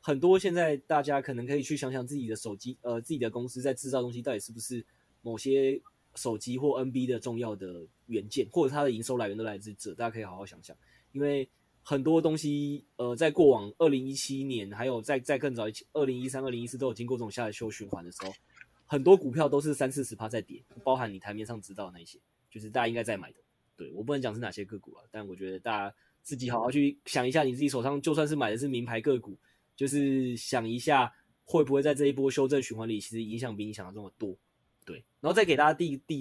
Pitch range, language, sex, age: 115-145 Hz, Chinese, male, 20-39